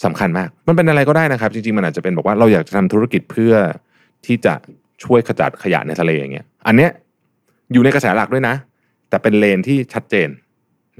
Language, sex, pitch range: Thai, male, 85-140 Hz